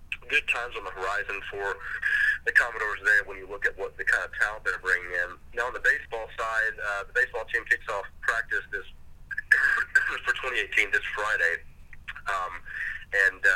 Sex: male